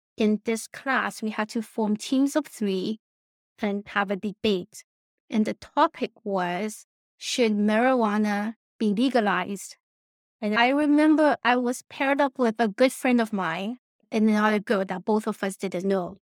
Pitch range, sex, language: 205-260 Hz, female, English